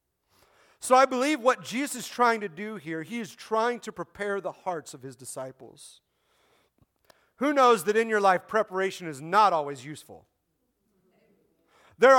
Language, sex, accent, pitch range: English, male, American, 200-265 Hz